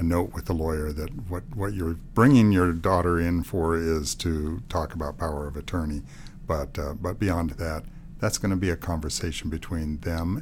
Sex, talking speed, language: male, 190 wpm, English